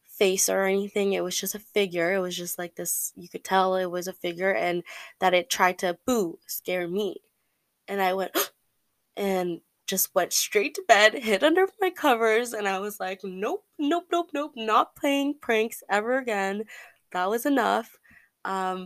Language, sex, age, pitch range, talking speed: English, female, 20-39, 180-225 Hz, 185 wpm